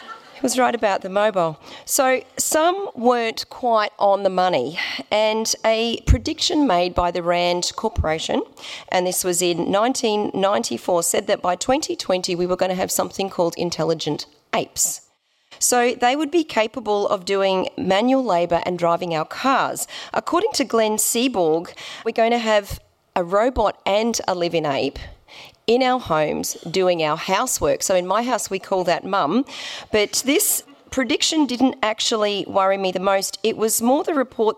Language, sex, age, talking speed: English, female, 40-59, 165 wpm